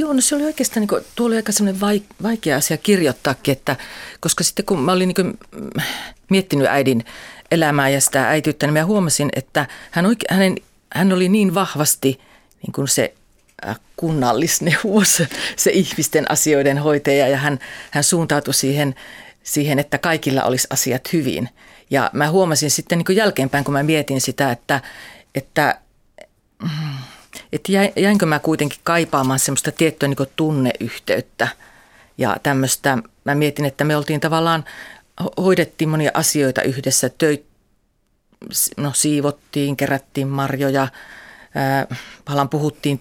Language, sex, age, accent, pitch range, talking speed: Finnish, female, 40-59, native, 140-175 Hz, 130 wpm